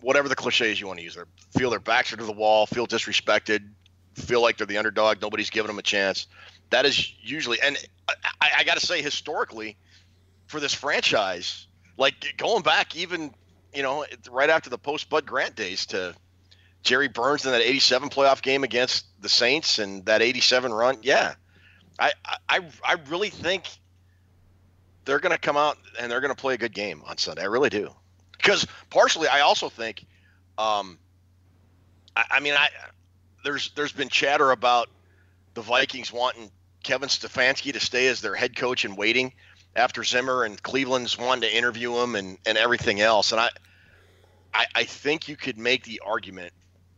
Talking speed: 185 wpm